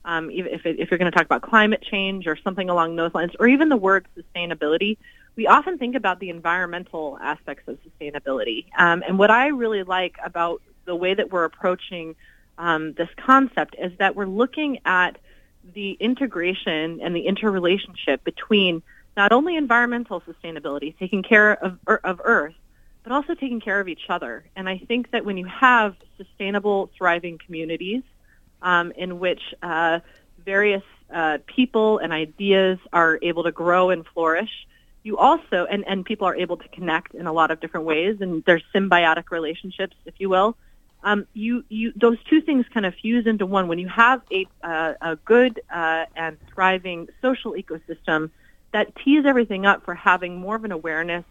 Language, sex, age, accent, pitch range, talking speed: English, female, 30-49, American, 165-210 Hz, 175 wpm